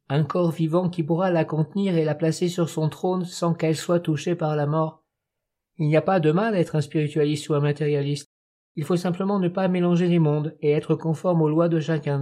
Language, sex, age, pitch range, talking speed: French, male, 50-69, 150-170 Hz, 235 wpm